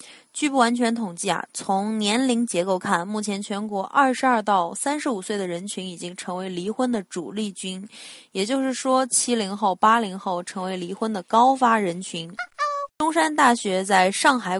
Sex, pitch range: female, 185-245 Hz